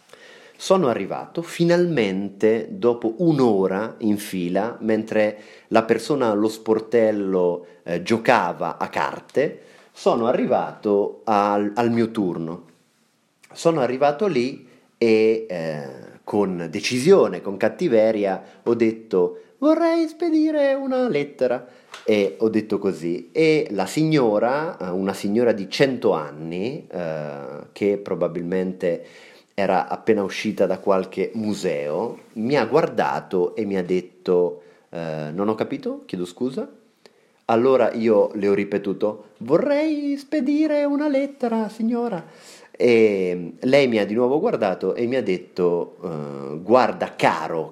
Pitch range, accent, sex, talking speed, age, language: 95-150 Hz, native, male, 120 wpm, 30-49, Italian